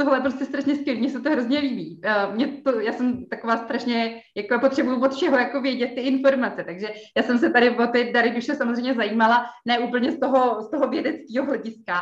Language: Czech